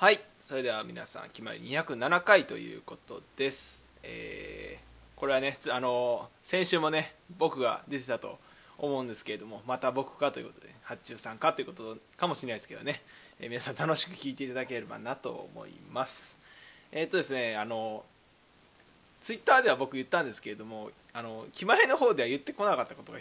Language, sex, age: Japanese, male, 20-39